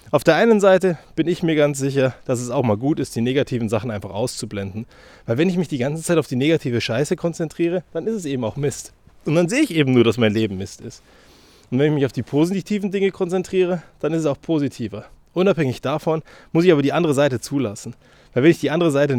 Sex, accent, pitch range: male, German, 120-155 Hz